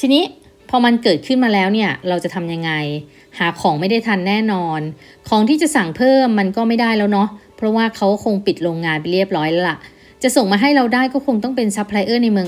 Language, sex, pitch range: Thai, female, 170-220 Hz